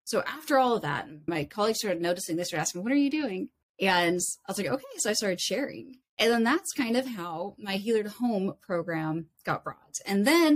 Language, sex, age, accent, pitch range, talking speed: English, female, 20-39, American, 170-230 Hz, 225 wpm